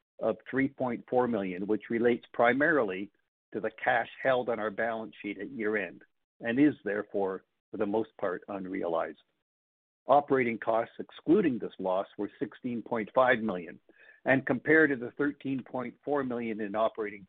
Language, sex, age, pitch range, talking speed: English, male, 60-79, 100-130 Hz, 140 wpm